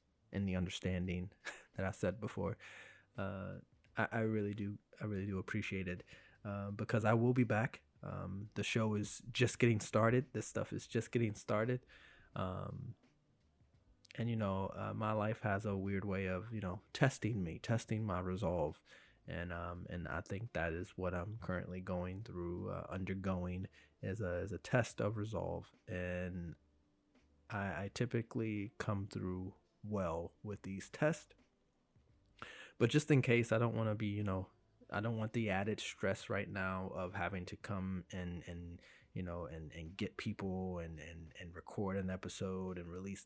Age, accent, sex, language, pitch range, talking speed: 20-39, American, male, English, 90-110 Hz, 175 wpm